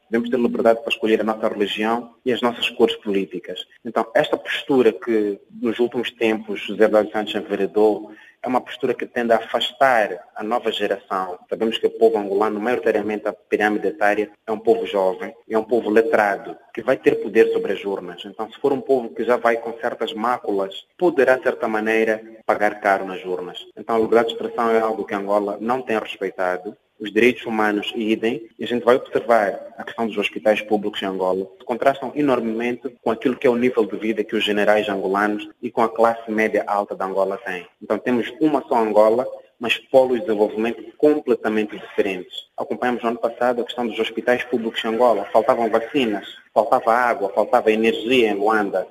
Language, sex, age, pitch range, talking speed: English, male, 30-49, 105-120 Hz, 195 wpm